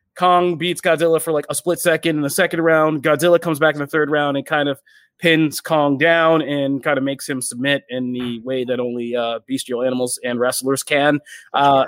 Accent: American